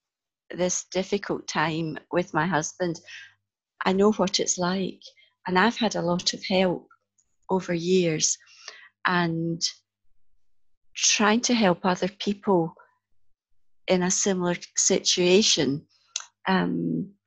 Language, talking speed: English, 110 wpm